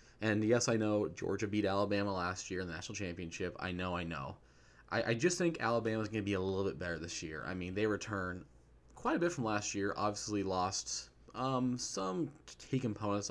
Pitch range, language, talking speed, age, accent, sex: 90-110 Hz, English, 215 wpm, 20-39, American, male